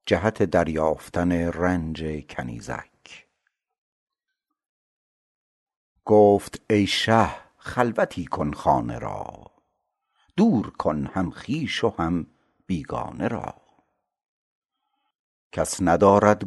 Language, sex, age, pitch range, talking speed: Persian, male, 60-79, 85-110 Hz, 75 wpm